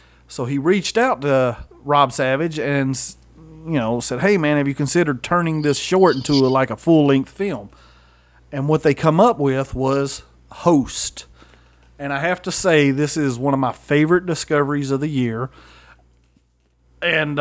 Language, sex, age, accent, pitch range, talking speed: English, male, 40-59, American, 120-170 Hz, 170 wpm